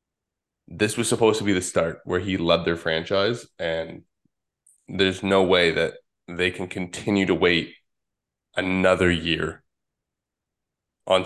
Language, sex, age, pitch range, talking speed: English, male, 20-39, 90-115 Hz, 135 wpm